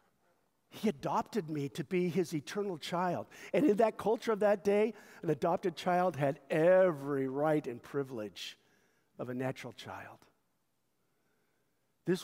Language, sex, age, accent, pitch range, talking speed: English, male, 50-69, American, 155-220 Hz, 135 wpm